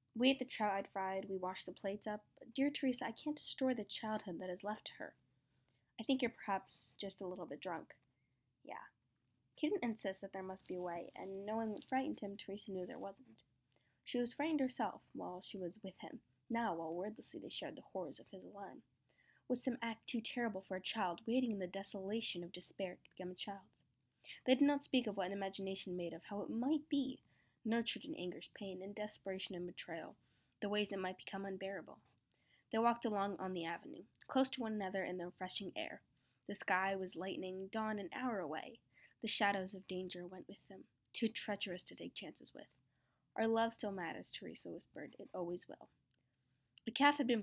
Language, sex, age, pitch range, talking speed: English, female, 10-29, 185-230 Hz, 210 wpm